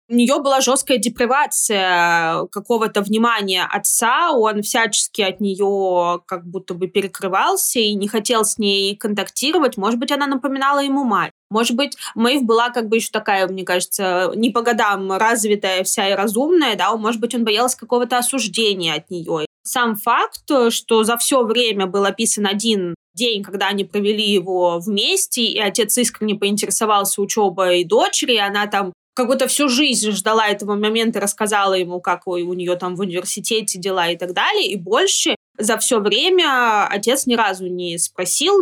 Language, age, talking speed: Russian, 20-39, 170 wpm